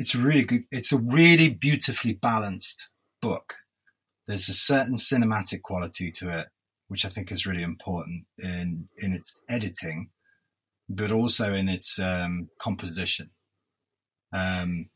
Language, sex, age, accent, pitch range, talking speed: English, male, 30-49, British, 90-120 Hz, 130 wpm